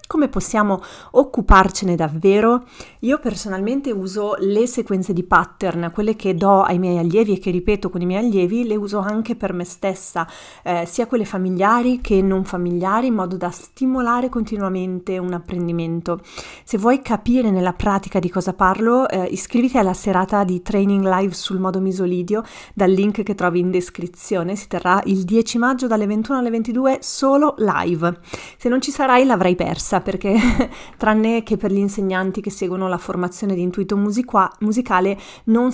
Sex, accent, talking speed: female, native, 170 wpm